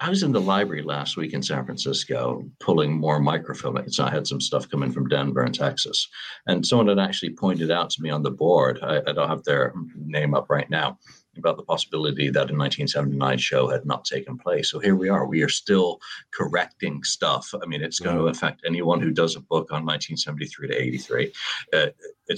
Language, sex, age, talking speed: English, male, 60-79, 200 wpm